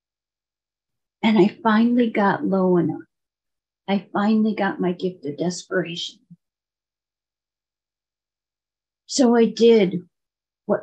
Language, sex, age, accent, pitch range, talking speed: English, female, 50-69, American, 185-210 Hz, 95 wpm